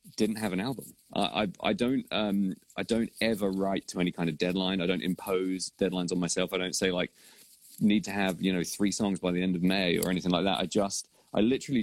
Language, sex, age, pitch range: English, male, 30-49, 90-100 Hz